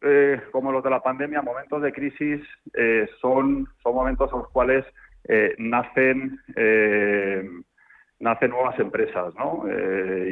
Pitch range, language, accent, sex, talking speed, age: 105-130 Hz, Spanish, Spanish, male, 140 wpm, 40-59